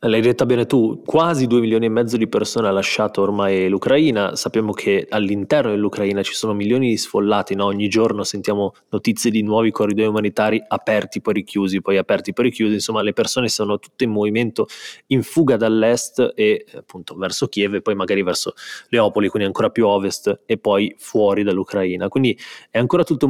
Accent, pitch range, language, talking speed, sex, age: native, 100-125 Hz, Italian, 185 wpm, male, 20-39